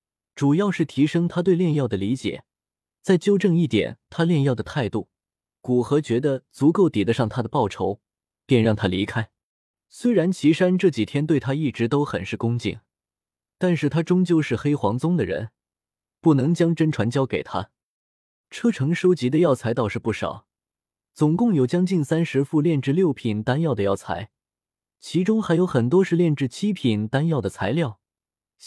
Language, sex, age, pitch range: Chinese, male, 20-39, 110-170 Hz